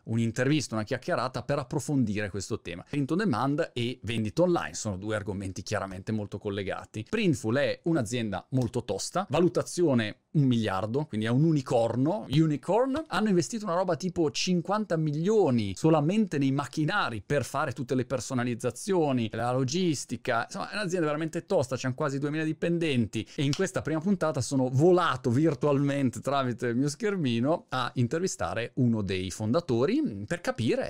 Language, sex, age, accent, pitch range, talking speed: Italian, male, 30-49, native, 110-155 Hz, 150 wpm